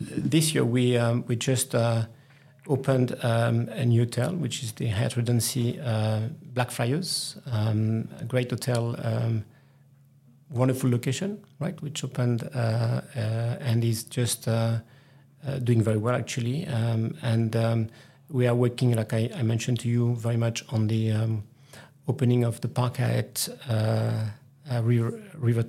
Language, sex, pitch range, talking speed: English, male, 115-135 Hz, 155 wpm